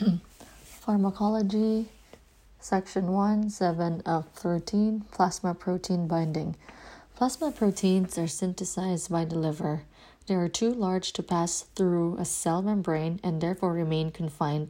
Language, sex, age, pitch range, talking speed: English, female, 20-39, 165-190 Hz, 125 wpm